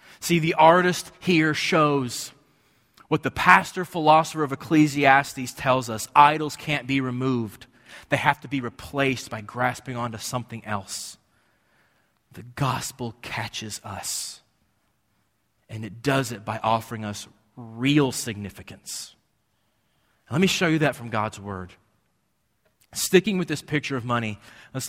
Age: 30-49